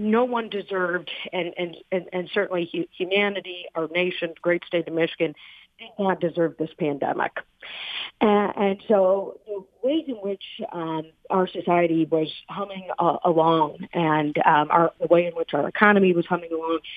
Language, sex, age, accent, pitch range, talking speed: English, female, 40-59, American, 165-200 Hz, 165 wpm